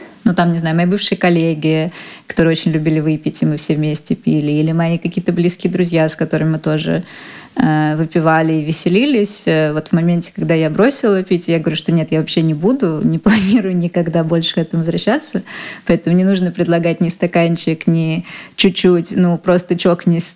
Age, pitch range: 20-39, 170-210 Hz